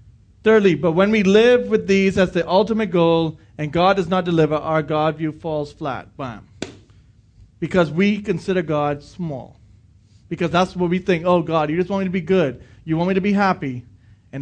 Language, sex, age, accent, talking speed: English, male, 30-49, American, 200 wpm